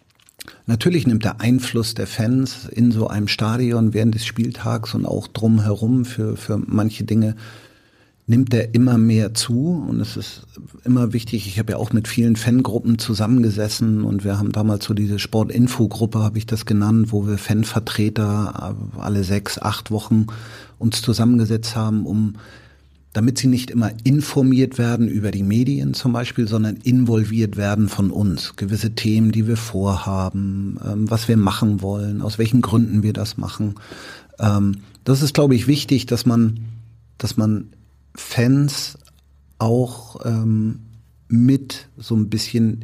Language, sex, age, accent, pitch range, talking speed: German, male, 50-69, German, 105-120 Hz, 145 wpm